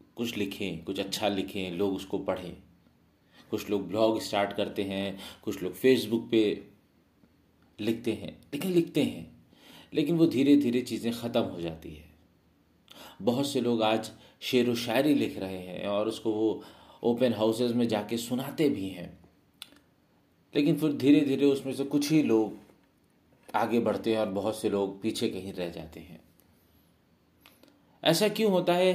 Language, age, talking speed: Hindi, 40-59, 160 wpm